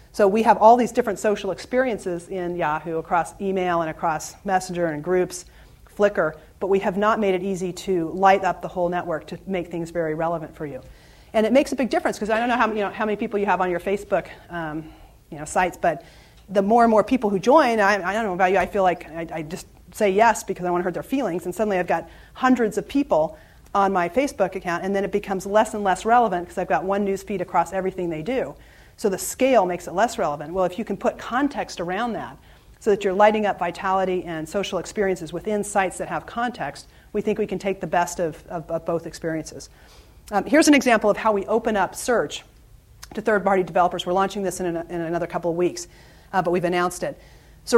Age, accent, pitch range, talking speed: 40-59, American, 175-210 Hz, 235 wpm